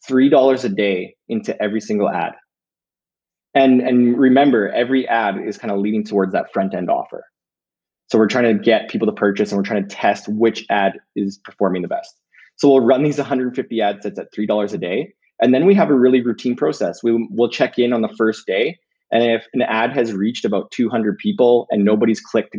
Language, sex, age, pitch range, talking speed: English, male, 20-39, 105-125 Hz, 215 wpm